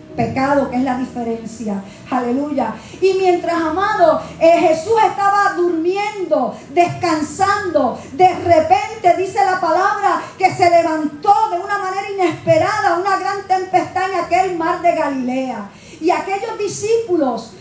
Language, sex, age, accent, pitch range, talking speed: Spanish, female, 40-59, American, 335-390 Hz, 125 wpm